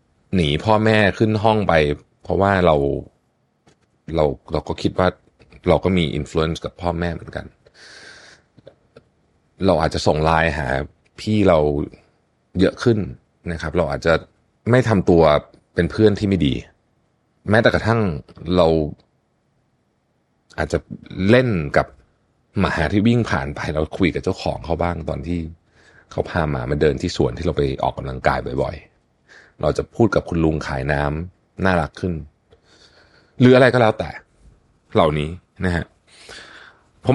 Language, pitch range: Thai, 80-110 Hz